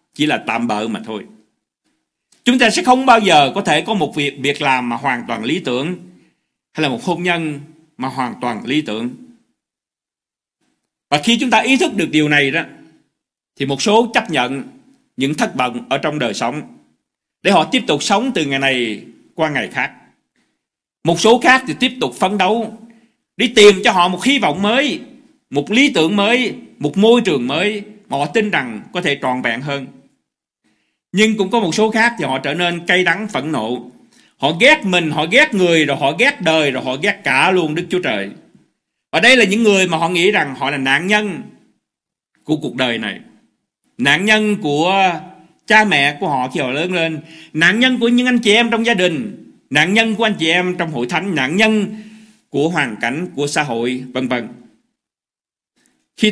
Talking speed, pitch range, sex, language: 200 wpm, 150-230 Hz, male, Vietnamese